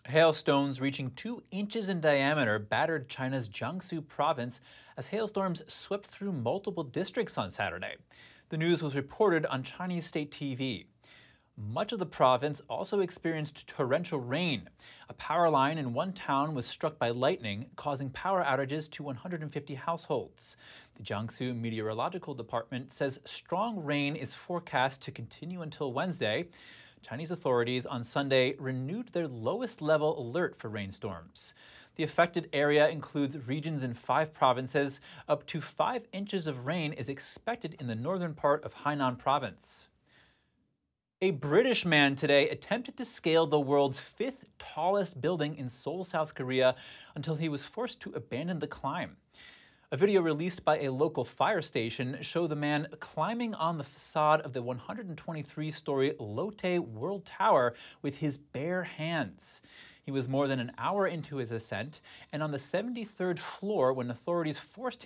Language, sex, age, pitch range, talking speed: English, male, 30-49, 130-170 Hz, 150 wpm